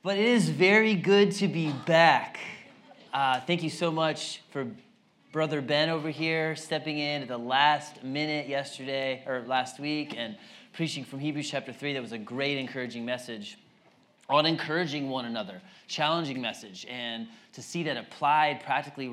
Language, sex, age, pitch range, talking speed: English, male, 20-39, 130-170 Hz, 165 wpm